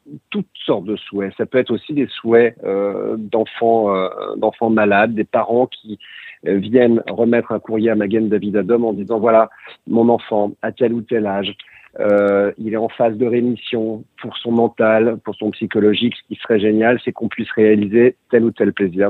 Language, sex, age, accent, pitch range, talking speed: French, male, 50-69, French, 100-120 Hz, 200 wpm